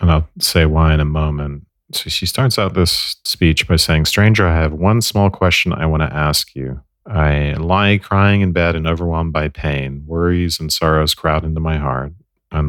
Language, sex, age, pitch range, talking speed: English, male, 40-59, 75-90 Hz, 205 wpm